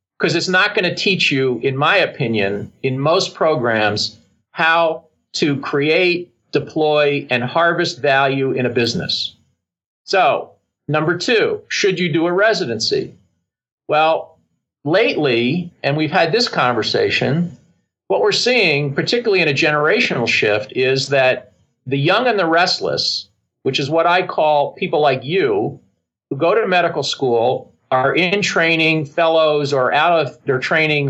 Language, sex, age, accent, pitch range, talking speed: English, male, 50-69, American, 135-175 Hz, 145 wpm